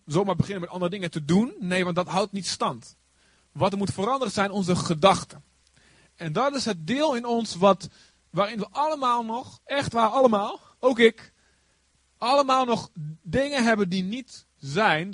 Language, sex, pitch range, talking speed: Dutch, male, 155-220 Hz, 175 wpm